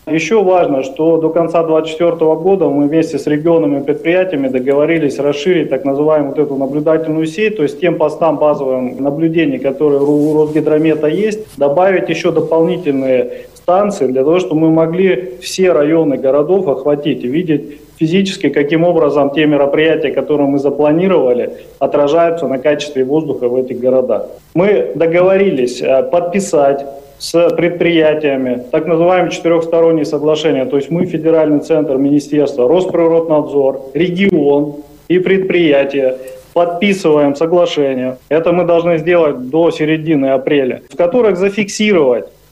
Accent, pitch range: native, 145-175 Hz